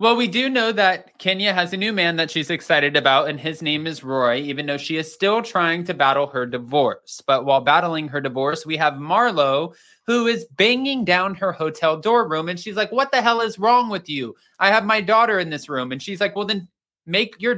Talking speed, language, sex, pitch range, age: 235 wpm, English, male, 145-215 Hz, 20-39